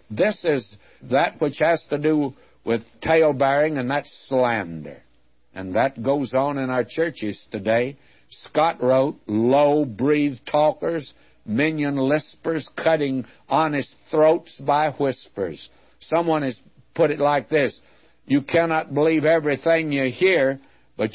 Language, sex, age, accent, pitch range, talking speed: English, male, 60-79, American, 120-150 Hz, 120 wpm